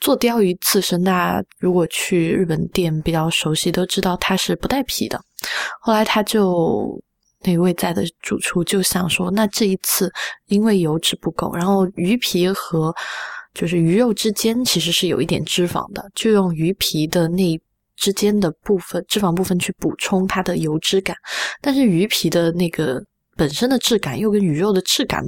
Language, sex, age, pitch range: Chinese, female, 20-39, 170-210 Hz